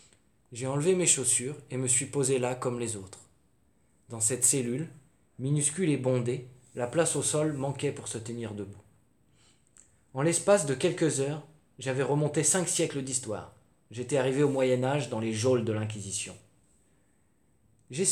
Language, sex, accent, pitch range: French, male, French, 110-130 Hz